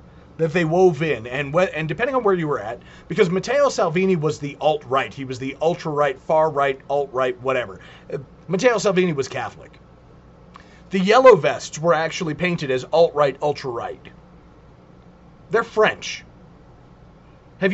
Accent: American